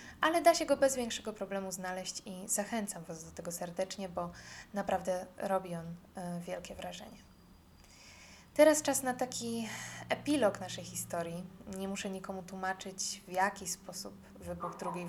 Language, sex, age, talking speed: Polish, female, 20-39, 145 wpm